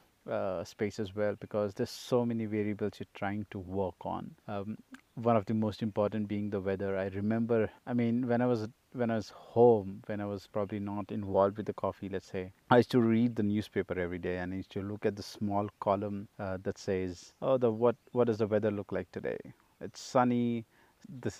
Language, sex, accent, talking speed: English, male, Indian, 220 wpm